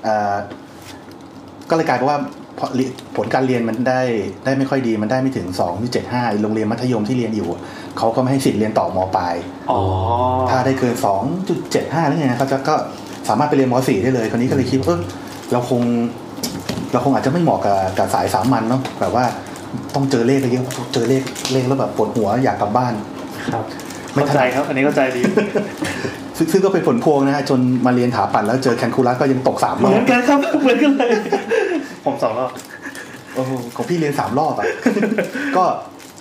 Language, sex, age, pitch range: Thai, male, 30-49, 115-135 Hz